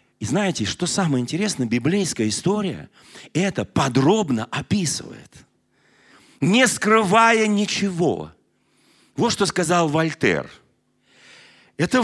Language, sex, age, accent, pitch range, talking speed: Russian, male, 40-59, native, 140-210 Hz, 90 wpm